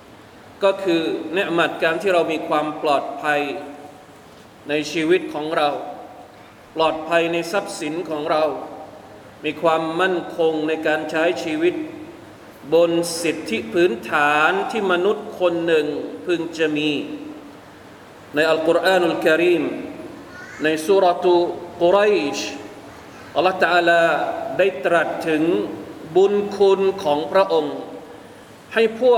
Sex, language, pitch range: male, Thai, 170-220 Hz